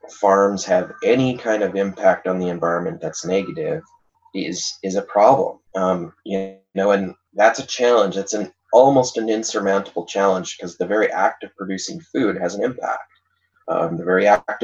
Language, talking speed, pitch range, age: English, 170 wpm, 95-110 Hz, 20-39